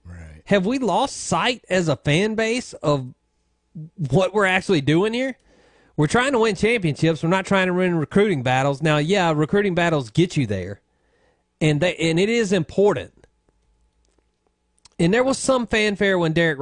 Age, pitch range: 40-59, 120-185 Hz